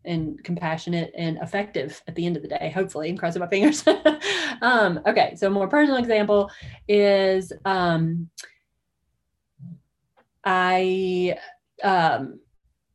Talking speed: 120 wpm